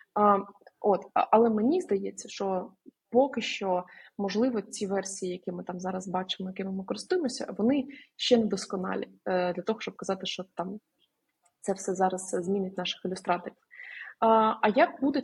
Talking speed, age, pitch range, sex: 155 wpm, 20-39, 185-230 Hz, female